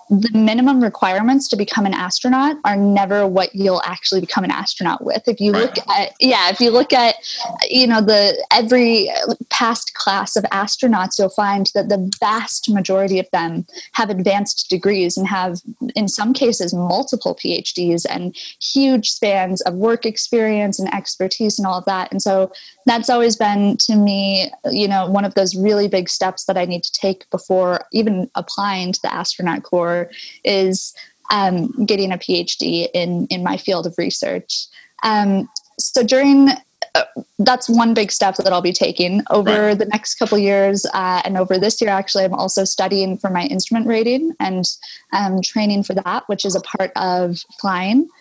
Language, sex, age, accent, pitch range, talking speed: English, female, 20-39, American, 185-230 Hz, 175 wpm